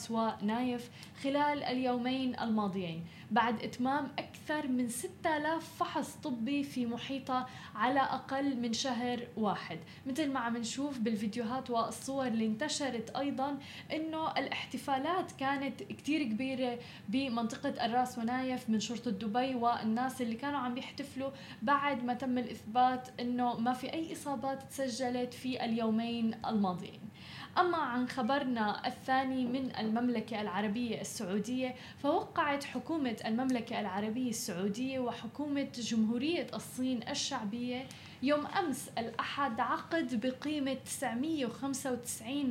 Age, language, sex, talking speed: 10-29, Arabic, female, 110 wpm